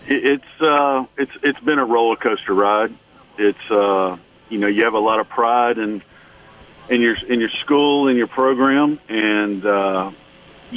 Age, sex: 40-59, male